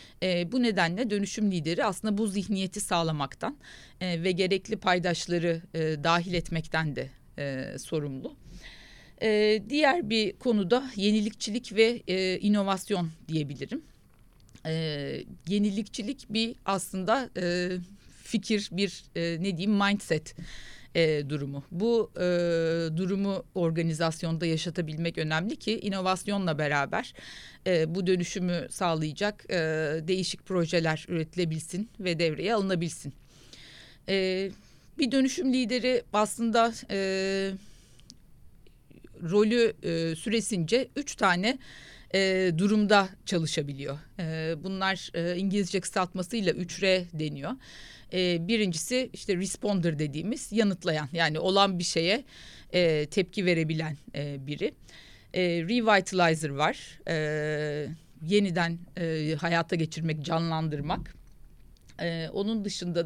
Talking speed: 85 wpm